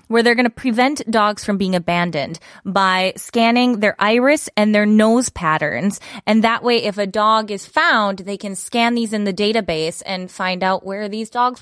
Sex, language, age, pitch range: female, Korean, 20-39, 200-275 Hz